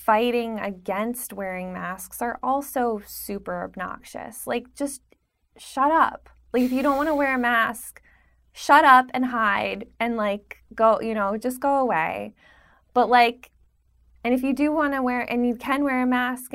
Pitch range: 205-260 Hz